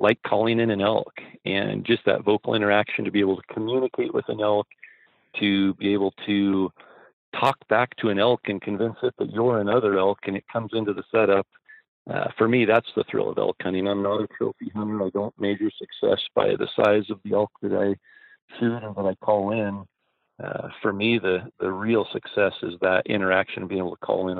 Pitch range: 100-115 Hz